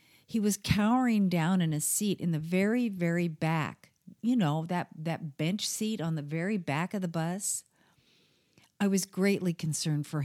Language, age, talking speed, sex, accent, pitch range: English, 50-69, 175 wpm, female, American, 170-220 Hz